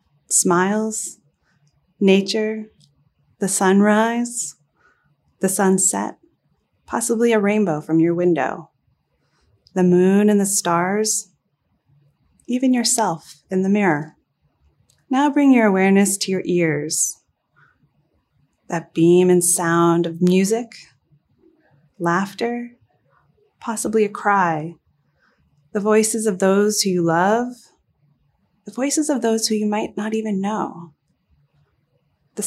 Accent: American